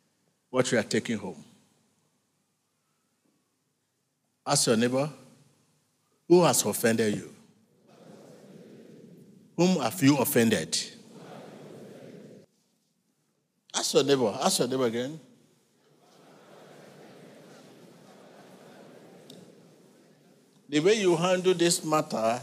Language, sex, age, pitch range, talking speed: English, male, 60-79, 150-205 Hz, 80 wpm